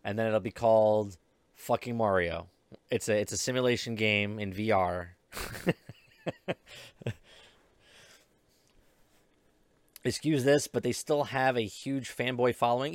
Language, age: English, 30-49